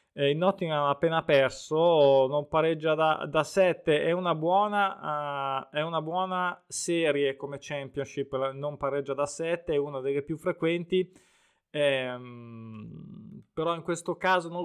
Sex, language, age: male, Italian, 20-39